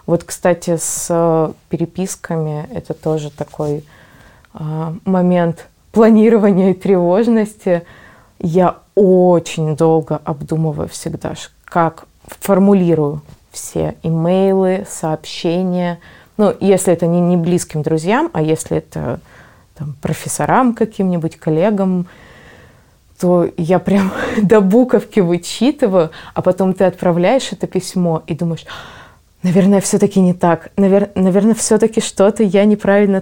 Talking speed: 105 wpm